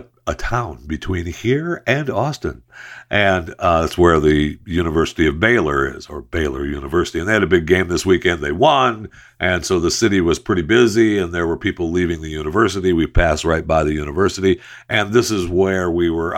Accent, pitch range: American, 75-95 Hz